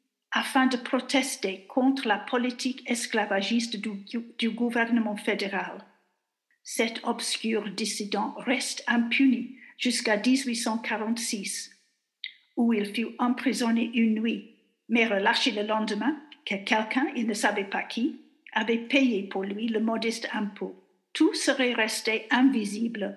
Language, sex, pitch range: French, female, 215-255 Hz